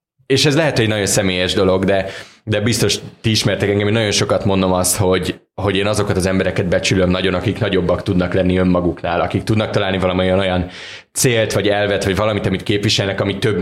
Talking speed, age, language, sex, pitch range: 205 wpm, 20-39, Hungarian, male, 95-105 Hz